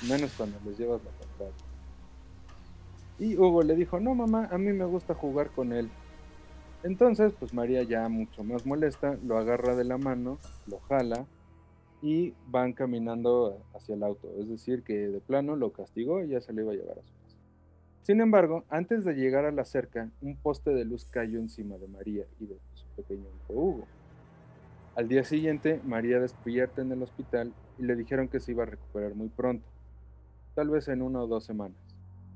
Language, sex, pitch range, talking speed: Spanish, male, 95-140 Hz, 190 wpm